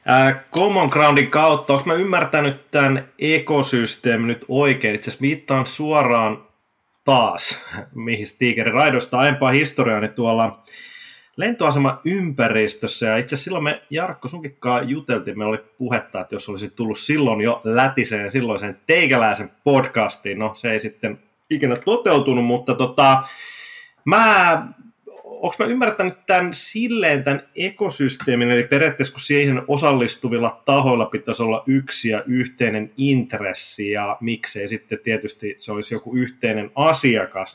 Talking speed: 130 wpm